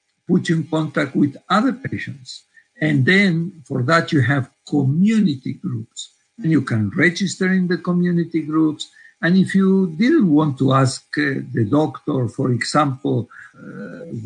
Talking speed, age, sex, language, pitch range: 150 wpm, 60-79, male, English, 125-175 Hz